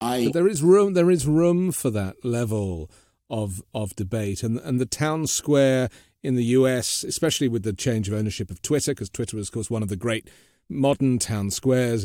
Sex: male